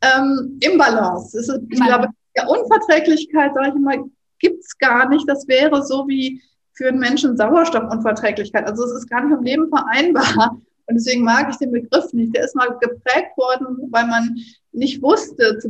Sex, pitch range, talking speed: female, 210-260 Hz, 170 wpm